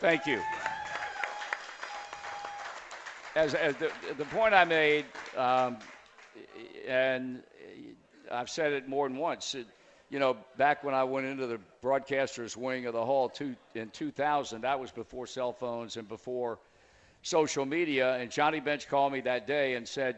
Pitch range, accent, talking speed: 115-140 Hz, American, 150 wpm